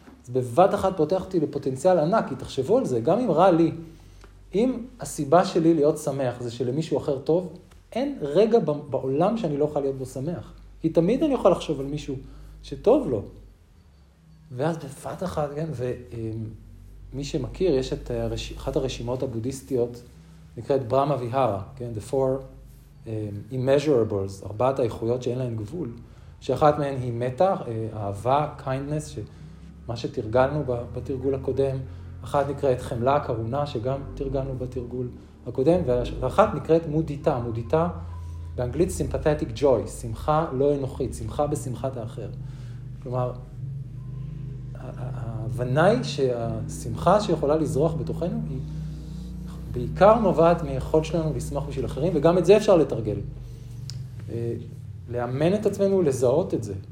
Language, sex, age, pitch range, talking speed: Hebrew, male, 40-59, 120-150 Hz, 130 wpm